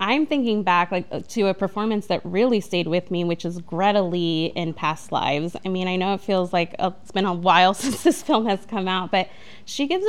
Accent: American